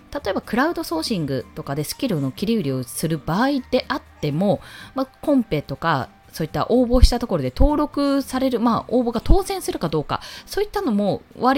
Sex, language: female, Japanese